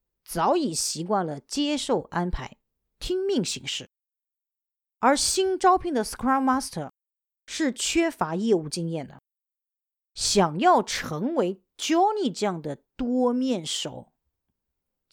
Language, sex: Chinese, female